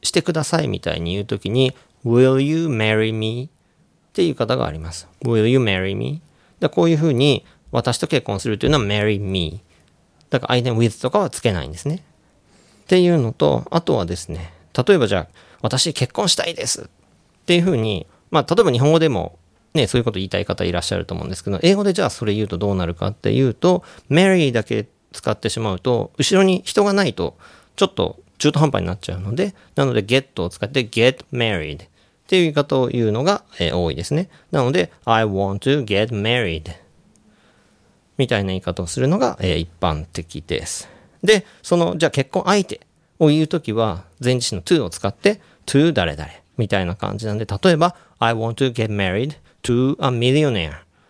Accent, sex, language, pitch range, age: native, male, Japanese, 95-145 Hz, 40-59